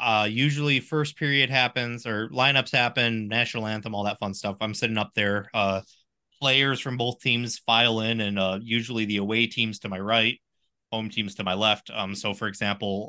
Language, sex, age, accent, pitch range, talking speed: English, male, 20-39, American, 95-115 Hz, 195 wpm